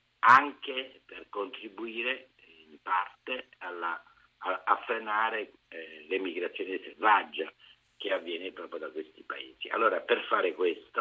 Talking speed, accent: 120 wpm, native